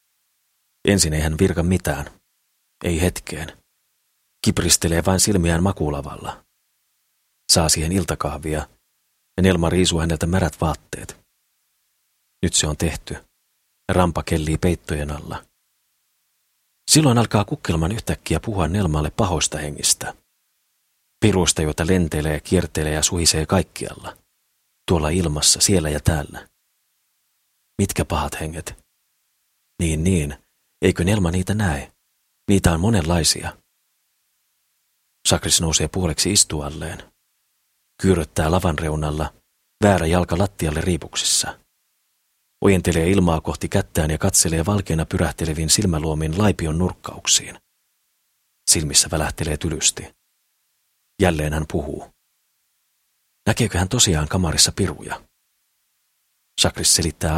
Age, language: 40-59, Finnish